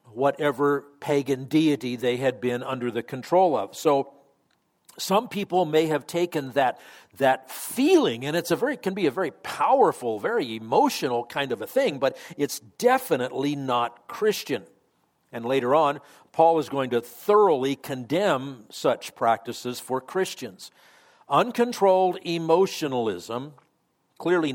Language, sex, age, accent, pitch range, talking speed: English, male, 50-69, American, 135-185 Hz, 135 wpm